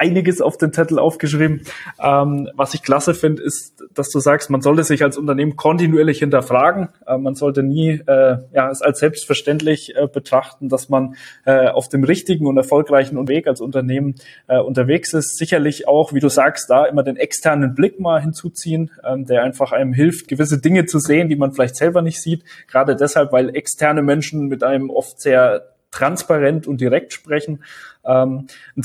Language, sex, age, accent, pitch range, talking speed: German, male, 20-39, German, 135-155 Hz, 165 wpm